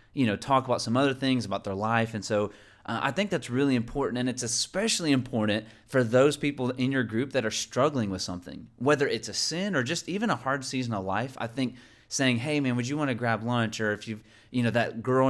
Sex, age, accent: male, 30-49, American